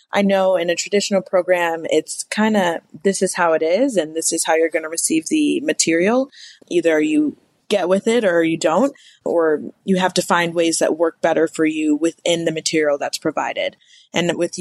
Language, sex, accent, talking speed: English, female, American, 205 wpm